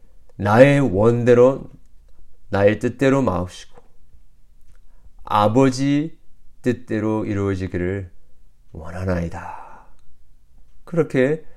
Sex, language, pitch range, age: male, Korean, 90-125 Hz, 40-59